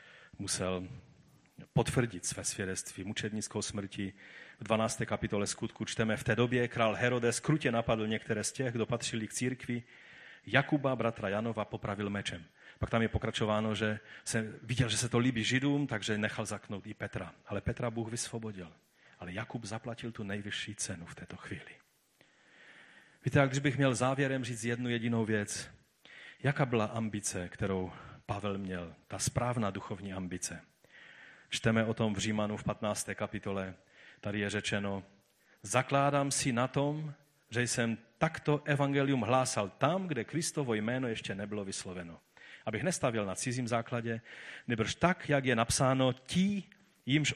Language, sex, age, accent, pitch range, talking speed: Czech, male, 40-59, native, 105-130 Hz, 150 wpm